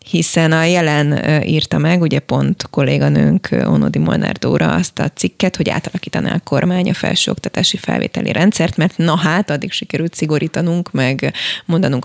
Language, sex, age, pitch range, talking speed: Hungarian, female, 20-39, 150-180 Hz, 150 wpm